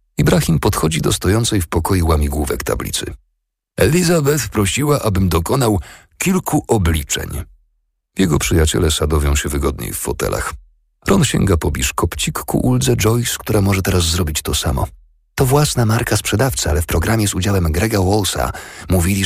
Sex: male